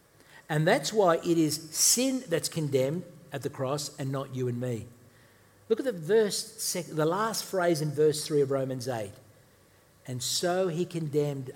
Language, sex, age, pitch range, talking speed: English, male, 60-79, 125-160 Hz, 170 wpm